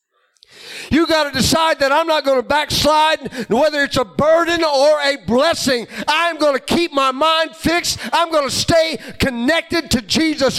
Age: 40-59